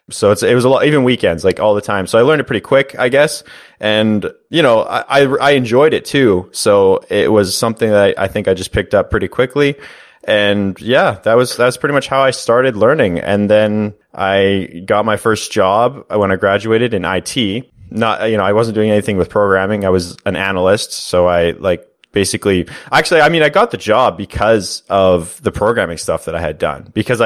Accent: American